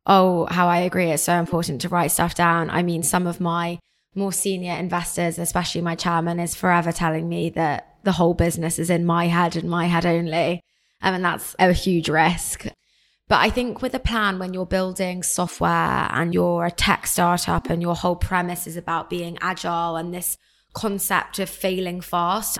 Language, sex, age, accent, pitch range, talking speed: English, female, 20-39, British, 170-185 Hz, 195 wpm